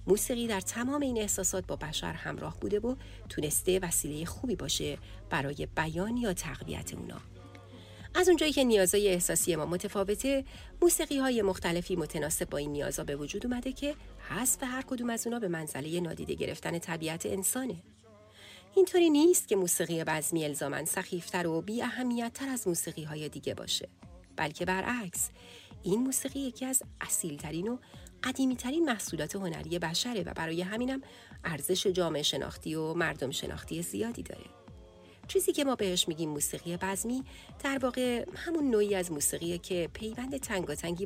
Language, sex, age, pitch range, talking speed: Persian, female, 40-59, 165-250 Hz, 140 wpm